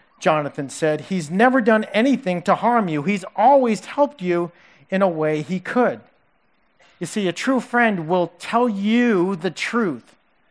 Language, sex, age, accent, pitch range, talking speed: English, male, 40-59, American, 185-245 Hz, 160 wpm